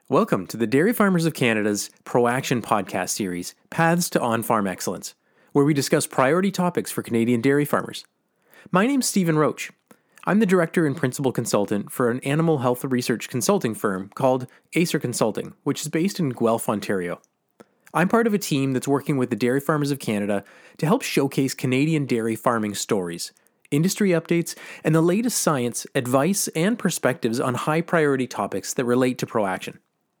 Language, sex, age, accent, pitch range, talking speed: English, male, 30-49, American, 120-165 Hz, 170 wpm